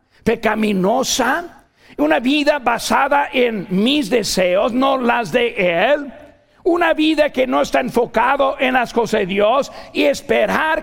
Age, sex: 50-69, male